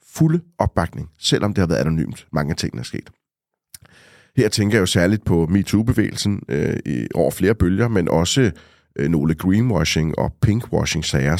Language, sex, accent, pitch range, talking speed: Danish, male, native, 85-115 Hz, 155 wpm